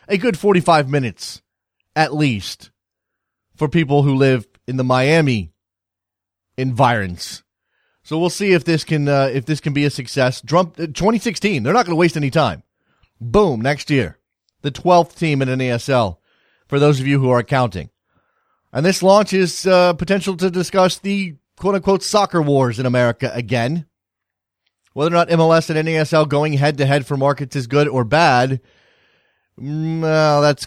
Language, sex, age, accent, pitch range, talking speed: English, male, 30-49, American, 125-165 Hz, 170 wpm